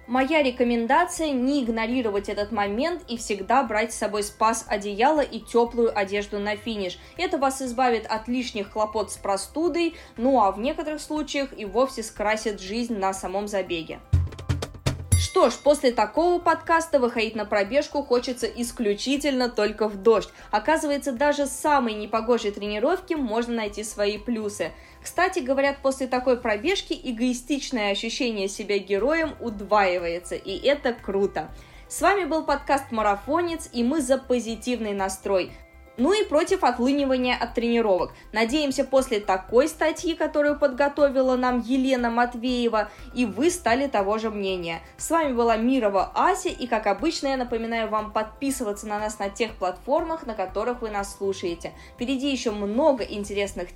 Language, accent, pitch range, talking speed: Russian, native, 210-280 Hz, 145 wpm